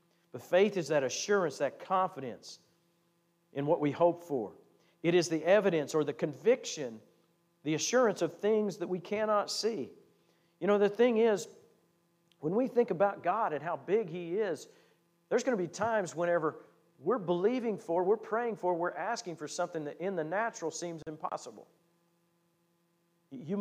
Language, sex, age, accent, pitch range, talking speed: English, male, 50-69, American, 155-200 Hz, 165 wpm